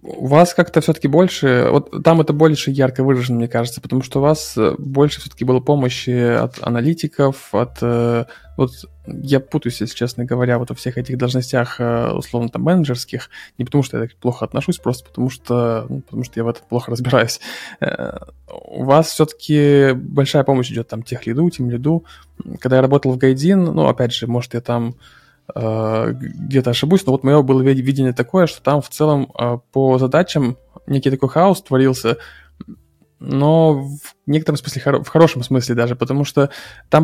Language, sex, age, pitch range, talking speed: Russian, male, 20-39, 120-145 Hz, 170 wpm